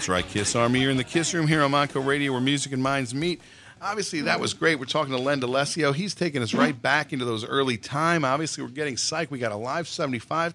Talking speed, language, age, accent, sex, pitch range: 255 wpm, English, 40-59, American, male, 130-170 Hz